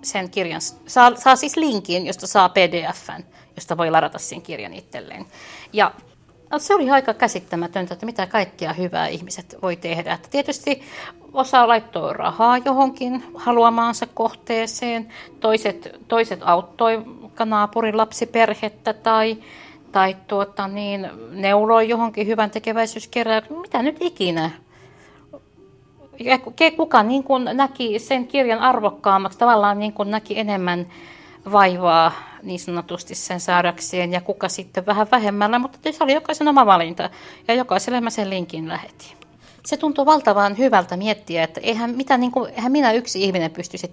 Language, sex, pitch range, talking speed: Finnish, female, 185-245 Hz, 125 wpm